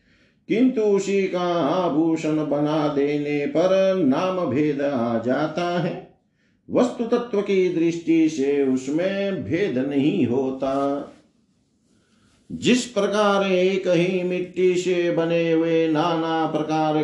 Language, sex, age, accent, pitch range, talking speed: Hindi, male, 50-69, native, 140-185 Hz, 110 wpm